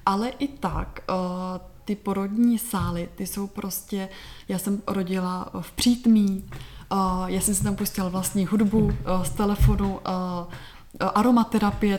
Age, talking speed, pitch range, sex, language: 20-39, 140 wpm, 185-210 Hz, female, Czech